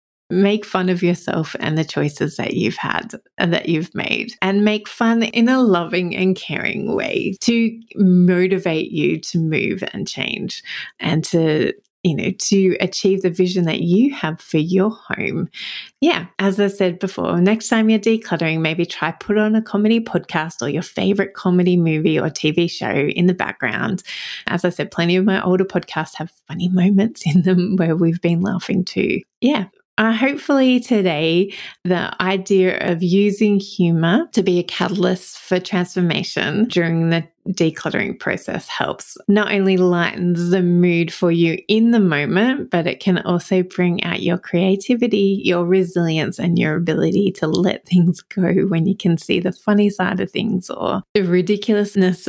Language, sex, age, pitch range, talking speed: English, female, 30-49, 175-200 Hz, 170 wpm